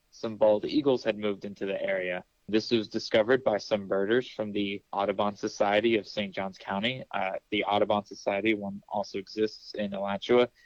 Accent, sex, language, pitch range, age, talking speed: American, male, English, 105-115 Hz, 20-39, 175 wpm